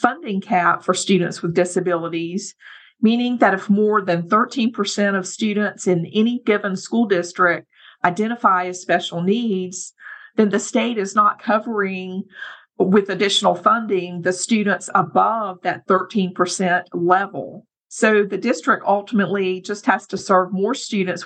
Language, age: English, 50-69